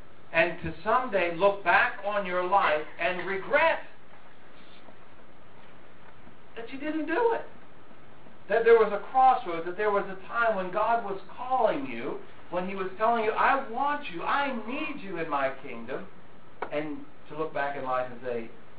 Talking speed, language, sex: 165 wpm, English, male